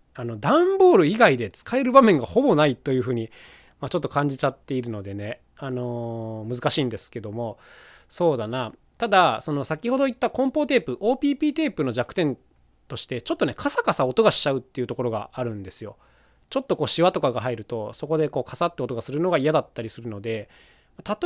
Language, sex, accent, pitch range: Japanese, male, native, 120-195 Hz